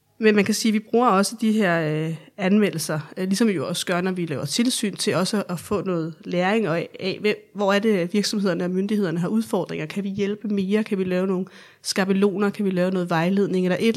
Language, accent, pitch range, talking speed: Danish, native, 185-215 Hz, 220 wpm